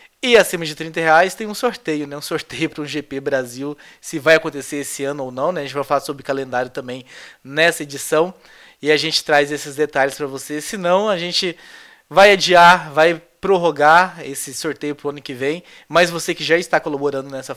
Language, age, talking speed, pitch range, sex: Portuguese, 20-39, 210 wpm, 140-180 Hz, male